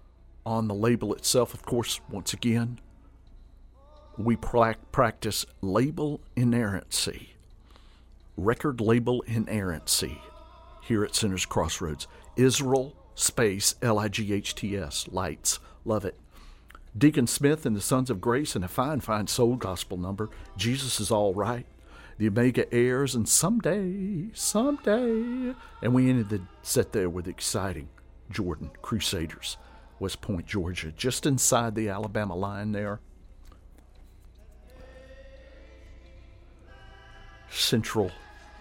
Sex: male